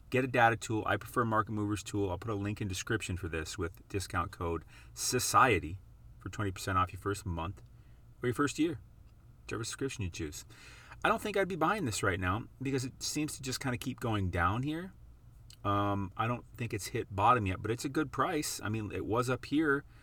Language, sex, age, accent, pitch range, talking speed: English, male, 30-49, American, 95-120 Hz, 220 wpm